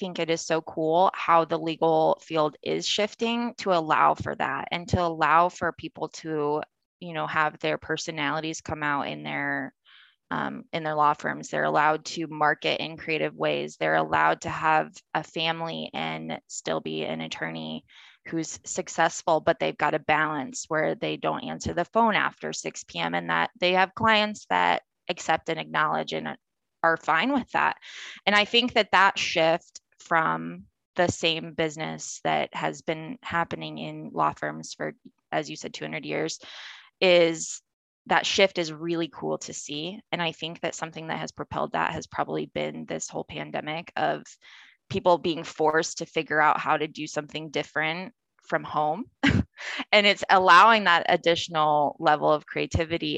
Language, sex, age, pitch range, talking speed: English, female, 20-39, 145-170 Hz, 170 wpm